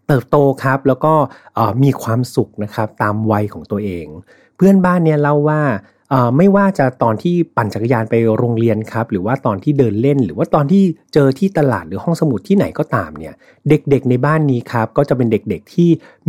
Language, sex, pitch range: Thai, male, 110-150 Hz